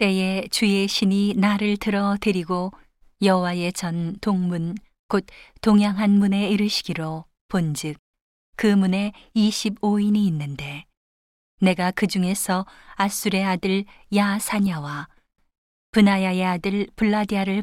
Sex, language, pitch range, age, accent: female, Korean, 180-205 Hz, 40-59, native